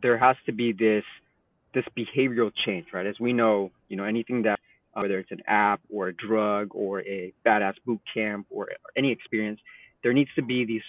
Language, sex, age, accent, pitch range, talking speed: English, male, 30-49, American, 105-125 Hz, 210 wpm